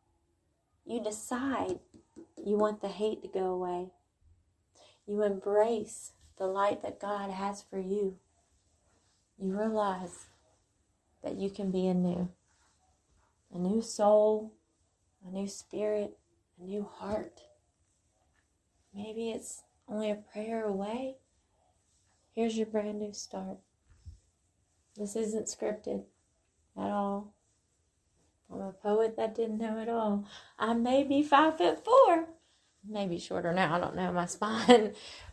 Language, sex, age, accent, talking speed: English, female, 30-49, American, 120 wpm